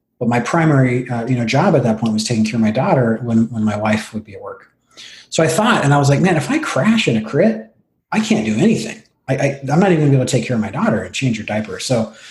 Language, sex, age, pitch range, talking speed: English, male, 30-49, 120-160 Hz, 300 wpm